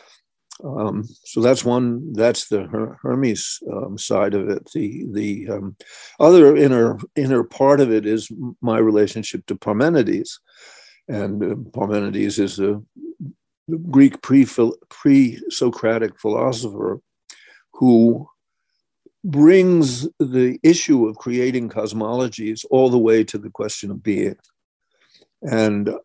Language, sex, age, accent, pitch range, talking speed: English, male, 60-79, American, 105-135 Hz, 115 wpm